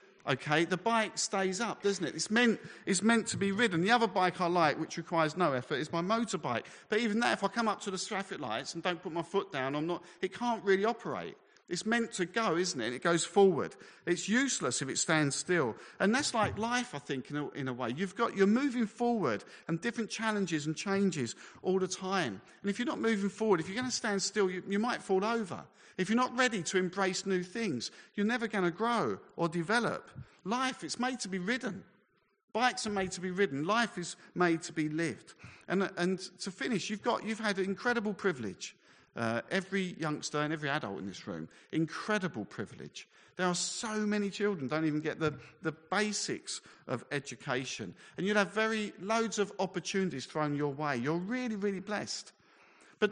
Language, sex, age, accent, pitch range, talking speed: English, male, 50-69, British, 160-215 Hz, 215 wpm